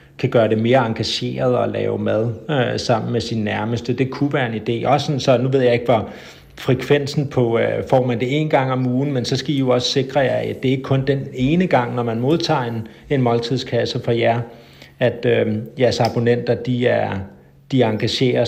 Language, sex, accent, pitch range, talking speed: Danish, male, native, 115-135 Hz, 220 wpm